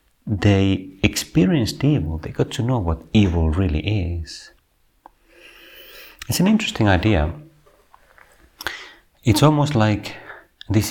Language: Finnish